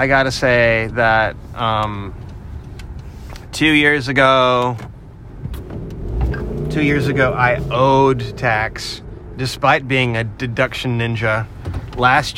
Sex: male